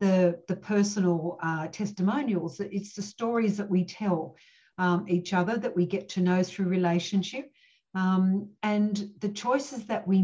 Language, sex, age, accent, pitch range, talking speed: English, female, 50-69, Australian, 175-210 Hz, 160 wpm